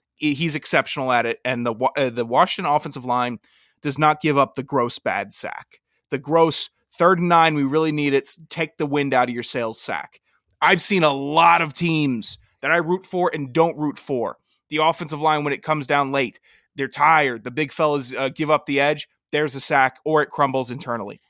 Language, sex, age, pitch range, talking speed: English, male, 30-49, 130-160 Hz, 210 wpm